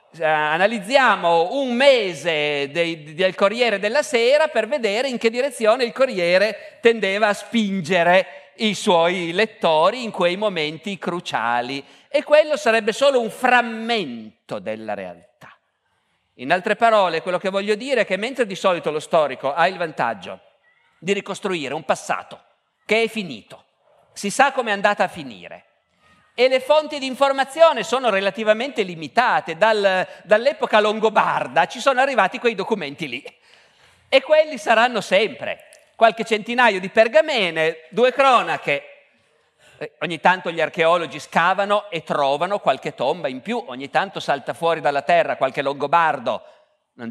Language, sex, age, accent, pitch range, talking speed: Italian, male, 50-69, native, 170-245 Hz, 140 wpm